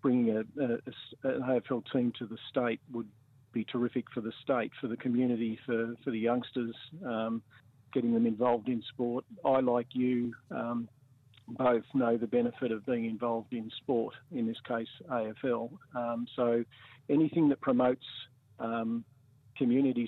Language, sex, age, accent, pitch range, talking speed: English, male, 50-69, Australian, 115-130 Hz, 150 wpm